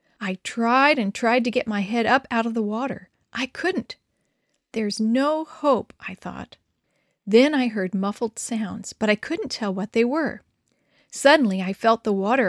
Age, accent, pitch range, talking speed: 40-59, American, 200-260 Hz, 180 wpm